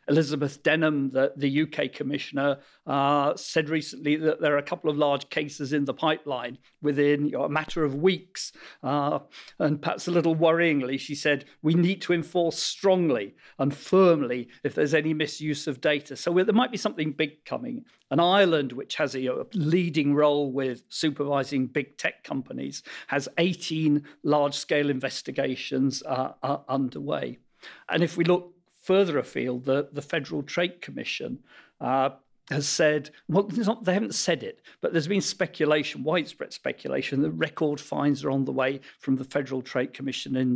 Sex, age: male, 50-69